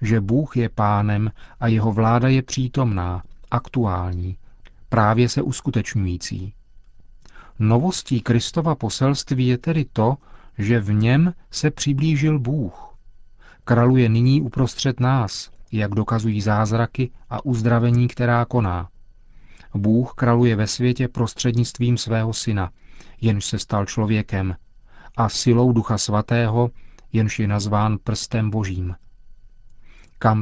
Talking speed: 110 wpm